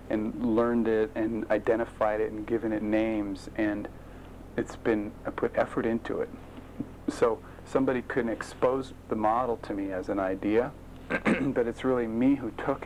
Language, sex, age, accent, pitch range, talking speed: English, male, 40-59, American, 100-115 Hz, 165 wpm